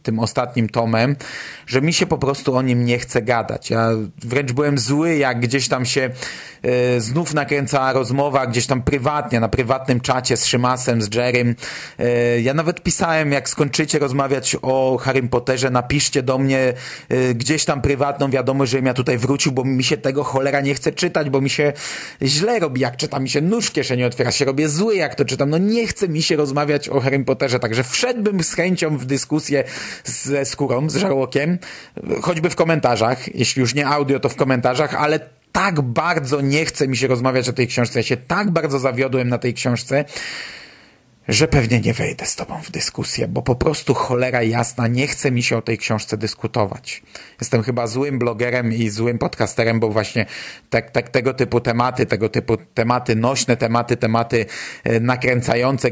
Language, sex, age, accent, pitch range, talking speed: Polish, male, 30-49, native, 120-145 Hz, 185 wpm